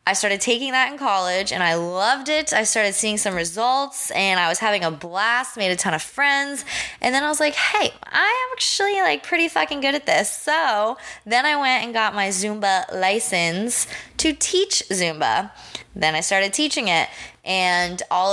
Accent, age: American, 20-39